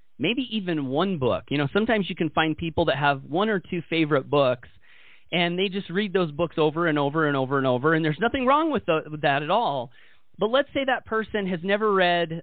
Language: English